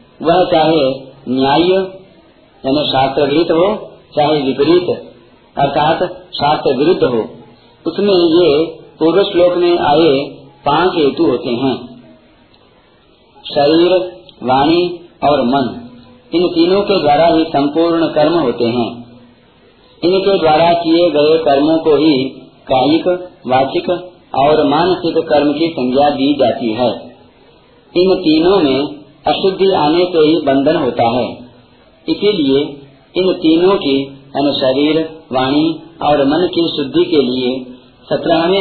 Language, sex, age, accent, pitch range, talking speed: Hindi, male, 50-69, native, 135-175 Hz, 115 wpm